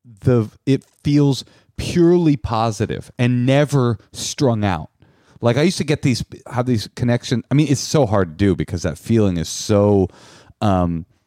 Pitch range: 105-140 Hz